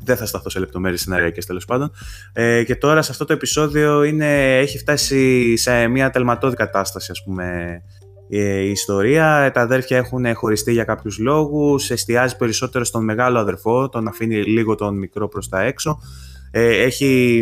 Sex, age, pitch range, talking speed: male, 20-39, 100-125 Hz, 170 wpm